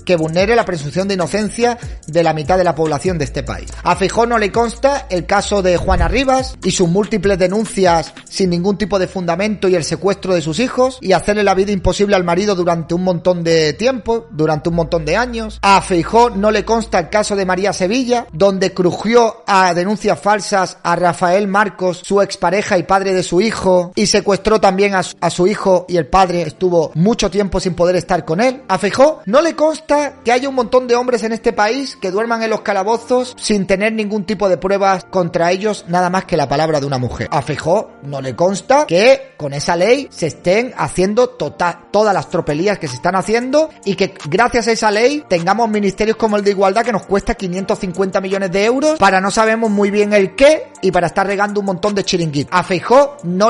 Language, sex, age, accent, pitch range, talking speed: Spanish, male, 30-49, Spanish, 175-220 Hz, 215 wpm